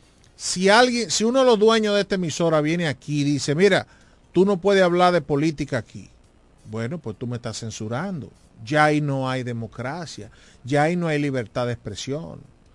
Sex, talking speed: male, 190 wpm